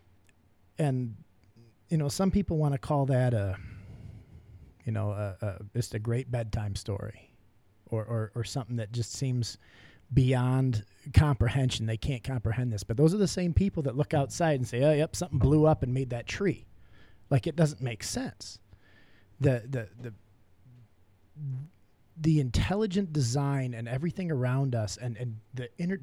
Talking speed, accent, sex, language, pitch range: 165 wpm, American, male, English, 105-145 Hz